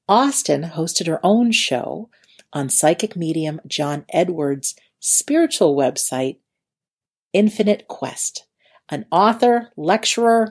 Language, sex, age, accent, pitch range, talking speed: English, female, 50-69, American, 150-215 Hz, 95 wpm